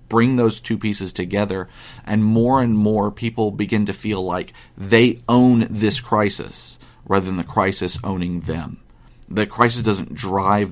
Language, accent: English, American